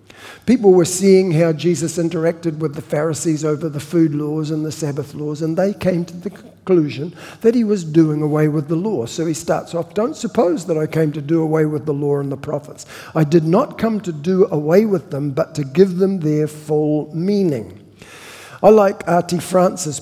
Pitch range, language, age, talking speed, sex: 150-185 Hz, English, 60-79, 205 wpm, male